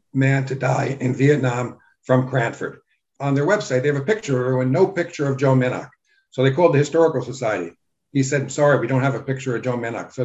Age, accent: 60-79, American